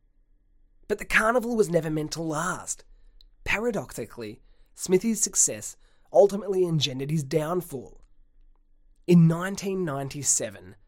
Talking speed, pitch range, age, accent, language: 95 wpm, 110-165 Hz, 20-39, Australian, English